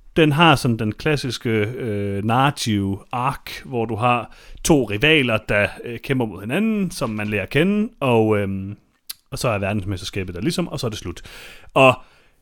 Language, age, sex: Danish, 30-49, male